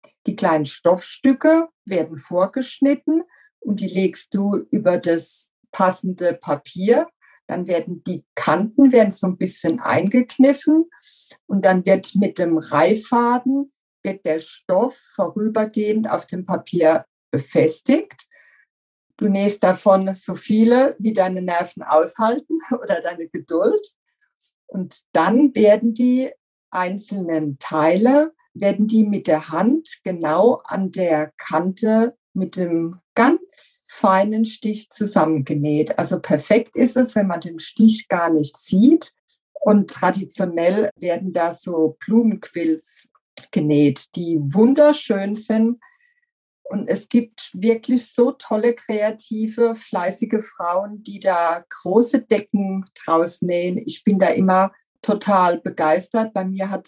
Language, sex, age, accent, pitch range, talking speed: German, female, 50-69, German, 175-235 Hz, 120 wpm